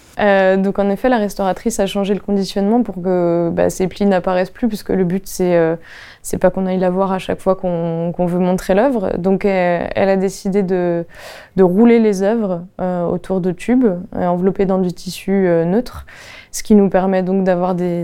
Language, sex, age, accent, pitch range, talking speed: French, female, 20-39, French, 180-200 Hz, 215 wpm